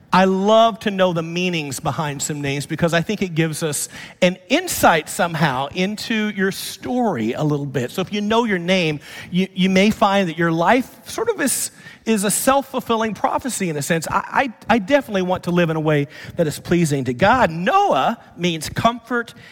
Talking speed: 195 wpm